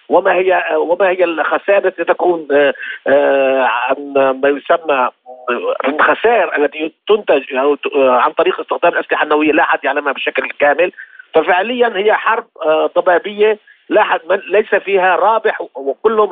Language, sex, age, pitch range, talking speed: Arabic, male, 50-69, 170-235 Hz, 125 wpm